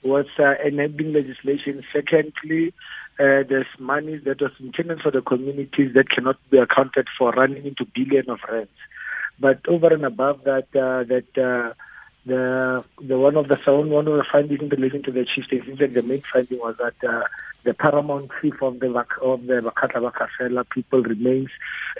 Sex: male